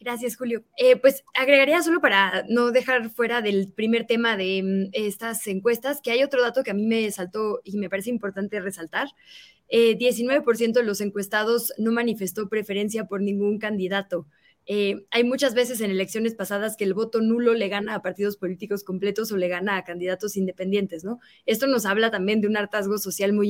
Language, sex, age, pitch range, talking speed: Spanish, female, 20-39, 195-240 Hz, 190 wpm